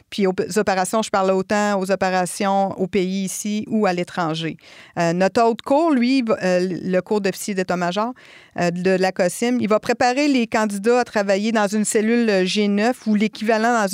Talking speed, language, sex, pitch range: 185 wpm, French, female, 190-225 Hz